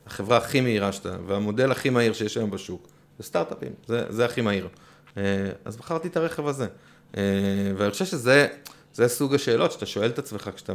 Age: 30-49